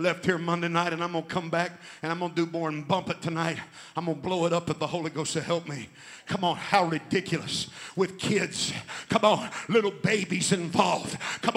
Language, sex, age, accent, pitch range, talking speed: English, male, 50-69, American, 190-290 Hz, 220 wpm